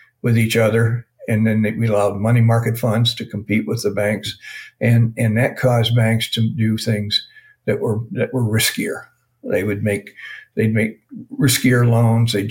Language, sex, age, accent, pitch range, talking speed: English, male, 60-79, American, 110-130 Hz, 175 wpm